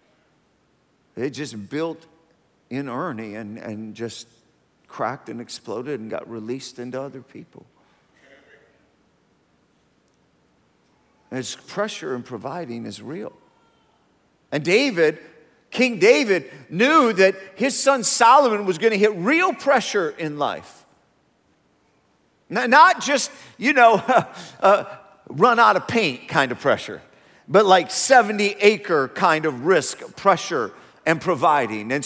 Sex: male